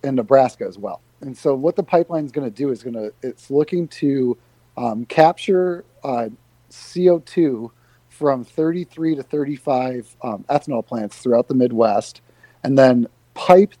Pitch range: 120-150 Hz